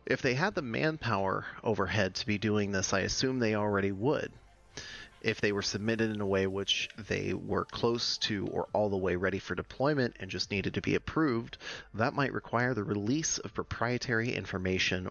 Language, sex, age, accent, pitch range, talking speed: English, male, 30-49, American, 95-120 Hz, 190 wpm